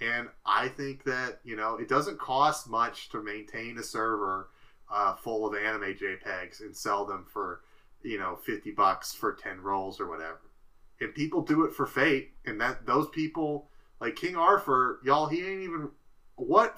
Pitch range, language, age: 115-150 Hz, English, 30-49